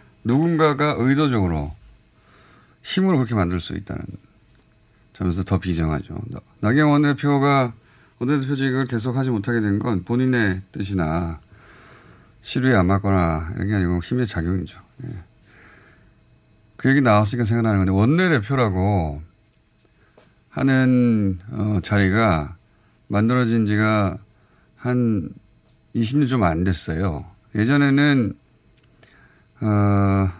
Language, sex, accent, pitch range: Korean, male, native, 100-130 Hz